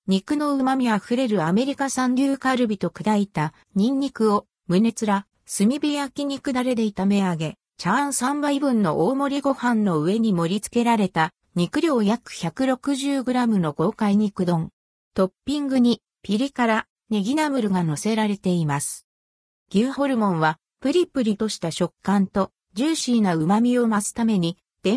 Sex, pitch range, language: female, 185-260 Hz, Japanese